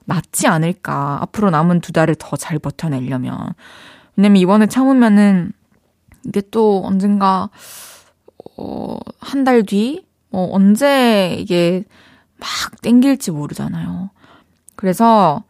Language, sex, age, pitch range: Korean, female, 20-39, 180-235 Hz